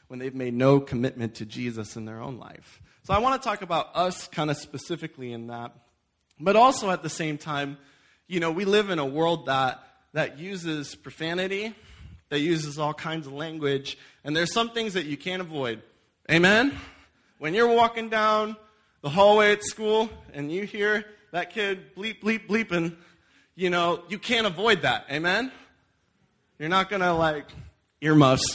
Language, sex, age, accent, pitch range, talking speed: English, male, 20-39, American, 145-205 Hz, 180 wpm